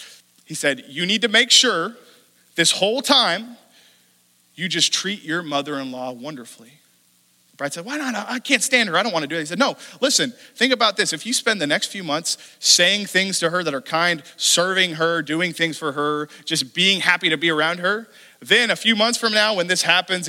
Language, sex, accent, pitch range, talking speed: English, male, American, 145-205 Hz, 215 wpm